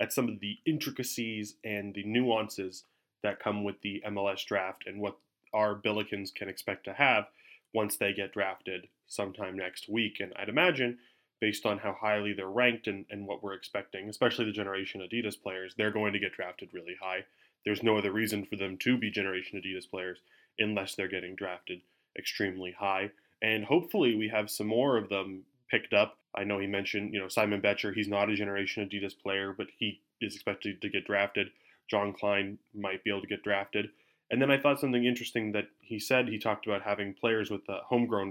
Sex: male